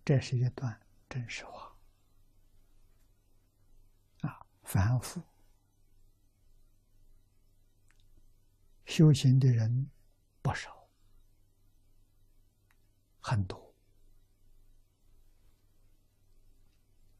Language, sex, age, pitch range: Chinese, male, 60-79, 100-115 Hz